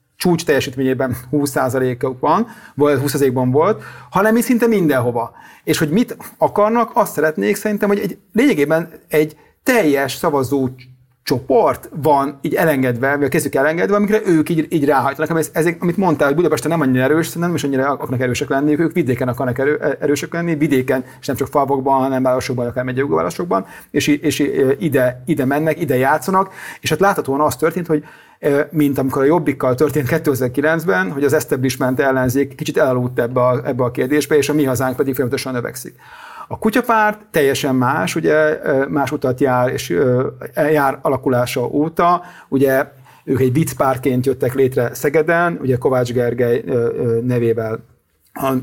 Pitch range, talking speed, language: 130-160 Hz, 155 wpm, Hungarian